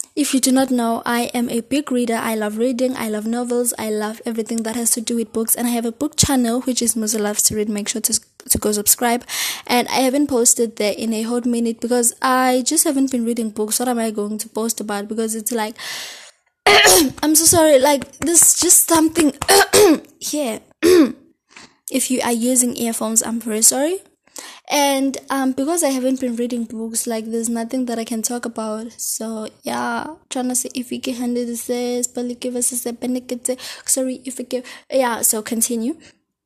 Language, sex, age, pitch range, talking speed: English, female, 20-39, 230-280 Hz, 205 wpm